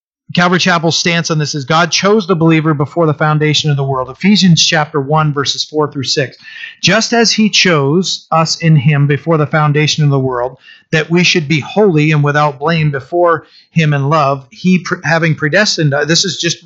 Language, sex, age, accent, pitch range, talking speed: English, male, 40-59, American, 150-185 Hz, 200 wpm